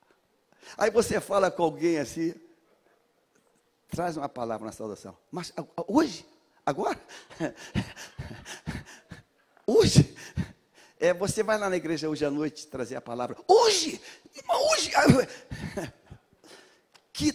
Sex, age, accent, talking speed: male, 60-79, Brazilian, 105 wpm